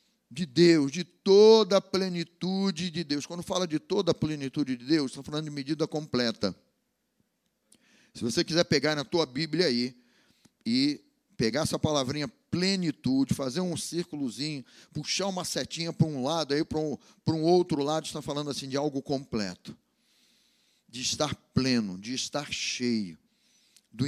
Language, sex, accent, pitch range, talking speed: Portuguese, male, Brazilian, 150-220 Hz, 155 wpm